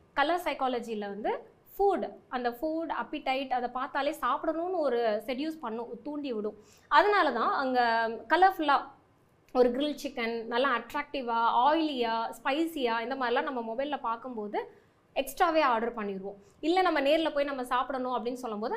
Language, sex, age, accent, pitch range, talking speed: Tamil, female, 20-39, native, 235-305 Hz, 135 wpm